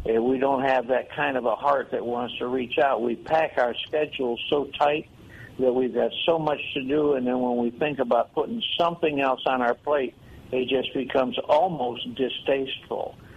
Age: 60-79